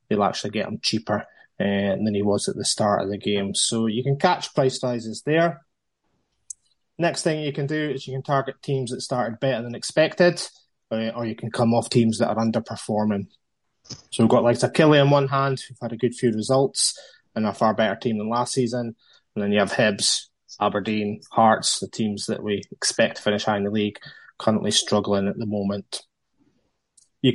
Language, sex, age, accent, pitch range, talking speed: English, male, 20-39, British, 110-135 Hz, 205 wpm